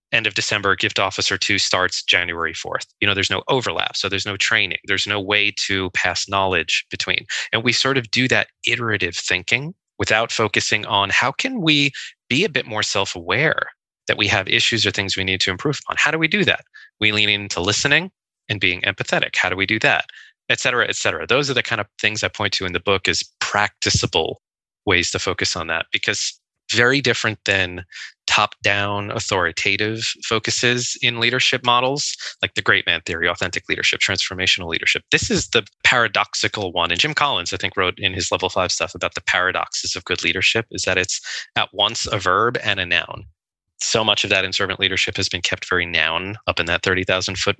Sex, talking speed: male, 205 wpm